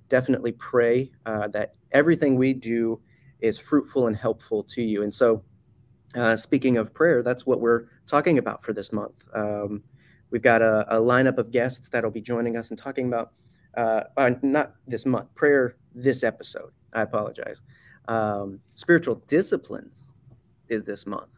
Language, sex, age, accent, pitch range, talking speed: English, male, 30-49, American, 110-130 Hz, 165 wpm